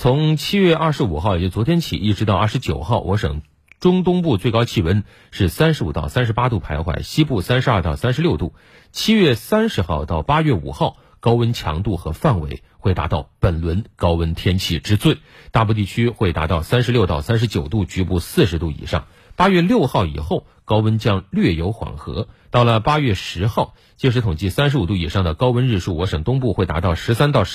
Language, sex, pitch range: Chinese, male, 90-125 Hz